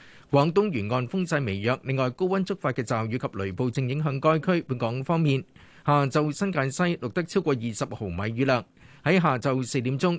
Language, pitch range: Chinese, 115-160 Hz